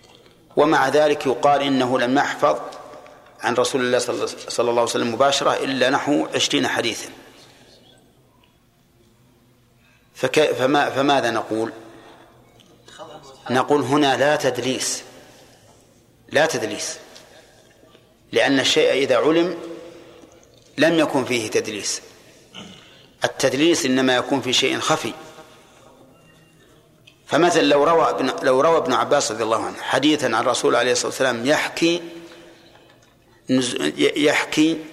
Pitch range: 125-155 Hz